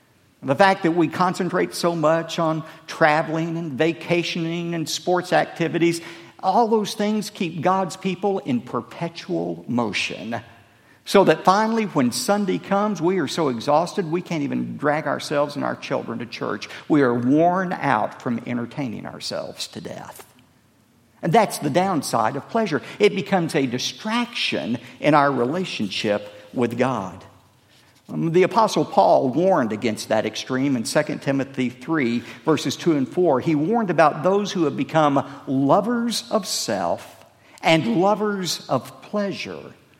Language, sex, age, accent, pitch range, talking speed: English, male, 50-69, American, 125-185 Hz, 145 wpm